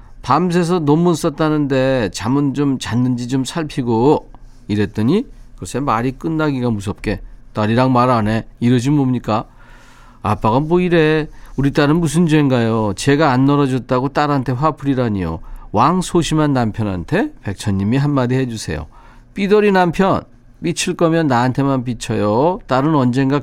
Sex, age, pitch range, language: male, 40-59, 115-155 Hz, Korean